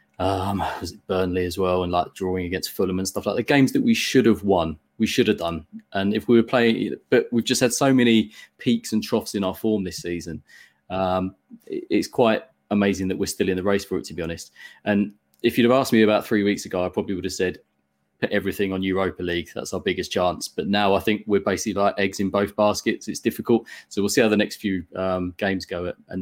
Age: 20-39